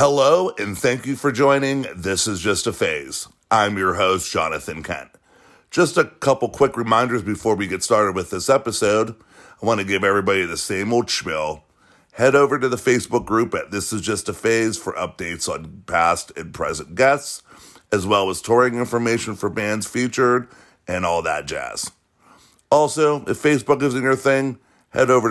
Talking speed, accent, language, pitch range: 180 wpm, American, English, 90-120 Hz